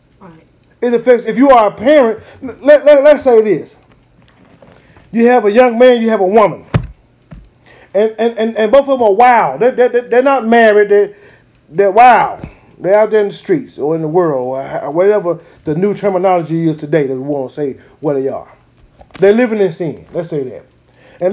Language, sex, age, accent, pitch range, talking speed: English, male, 30-49, American, 175-240 Hz, 200 wpm